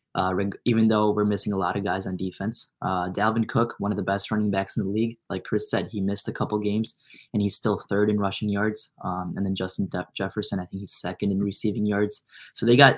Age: 10-29